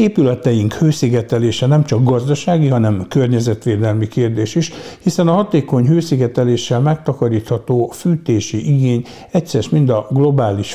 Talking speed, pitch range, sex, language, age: 110 wpm, 110-135 Hz, male, Hungarian, 60-79